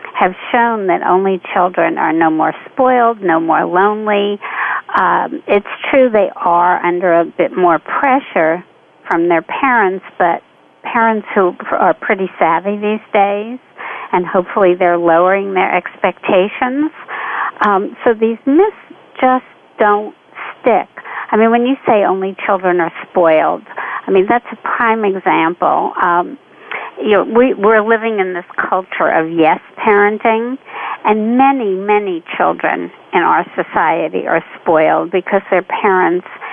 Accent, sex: American, female